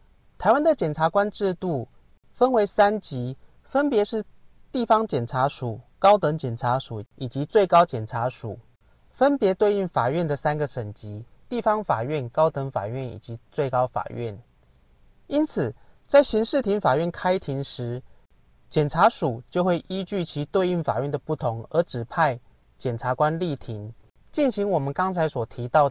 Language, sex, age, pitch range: Chinese, male, 30-49, 120-190 Hz